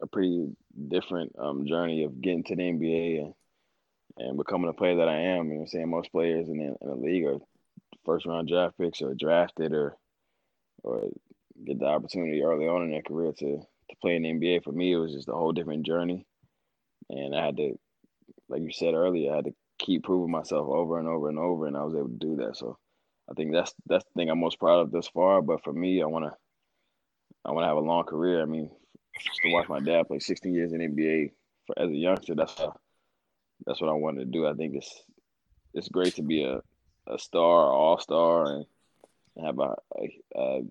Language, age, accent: English, 20-39, American